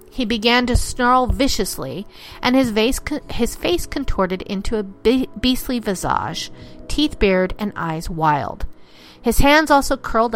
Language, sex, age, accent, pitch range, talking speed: English, female, 40-59, American, 190-255 Hz, 150 wpm